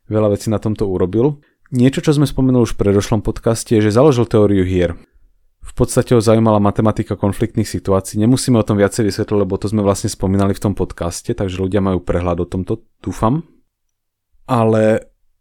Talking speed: 180 wpm